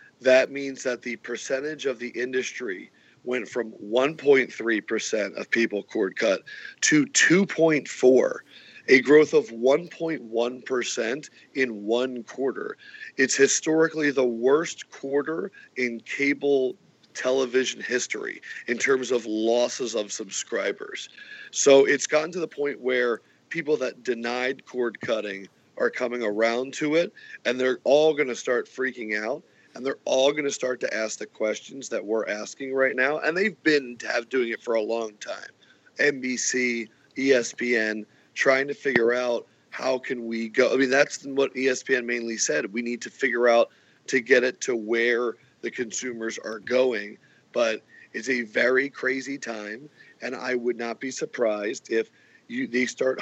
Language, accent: English, American